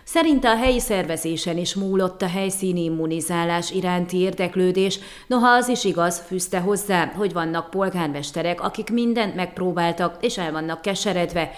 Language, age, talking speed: Hungarian, 30-49, 140 wpm